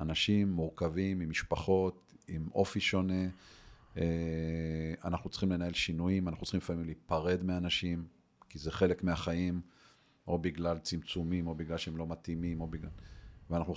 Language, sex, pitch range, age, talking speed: Hebrew, male, 85-100 Hz, 40-59, 135 wpm